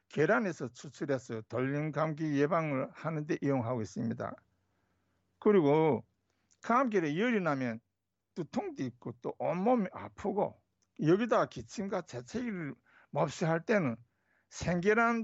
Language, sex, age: Korean, male, 60-79